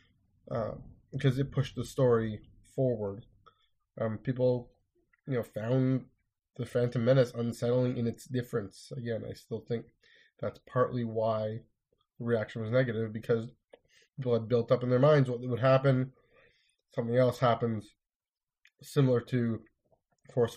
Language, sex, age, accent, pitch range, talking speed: English, male, 20-39, American, 110-130 Hz, 135 wpm